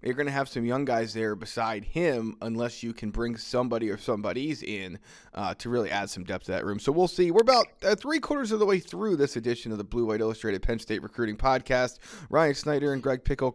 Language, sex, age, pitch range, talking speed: English, male, 20-39, 115-145 Hz, 235 wpm